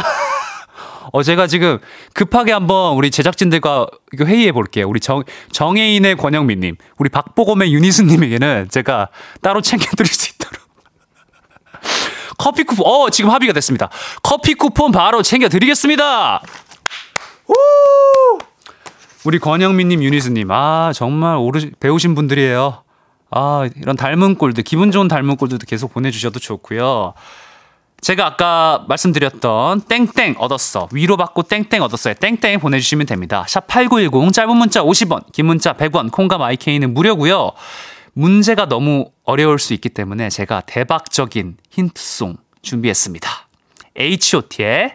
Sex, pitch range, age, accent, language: male, 135-210 Hz, 20-39, native, Korean